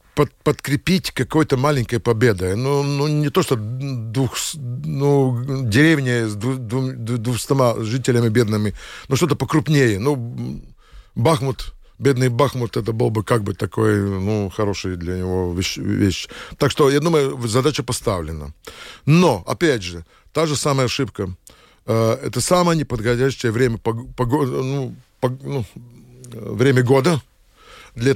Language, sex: Russian, male